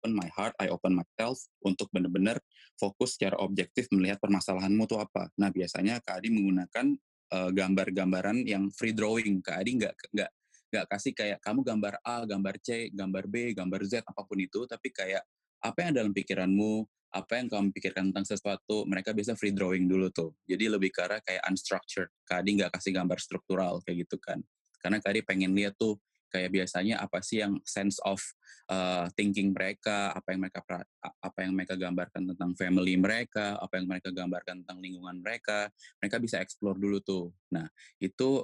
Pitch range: 95-100 Hz